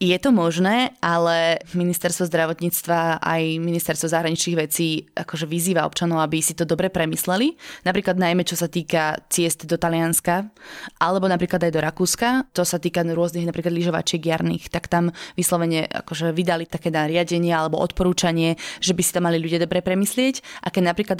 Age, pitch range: 20-39, 165-185 Hz